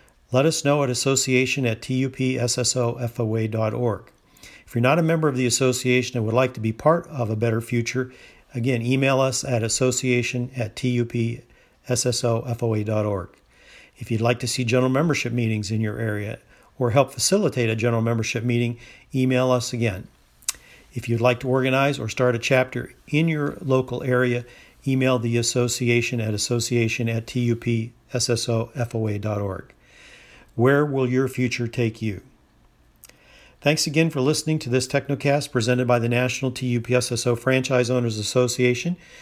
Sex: male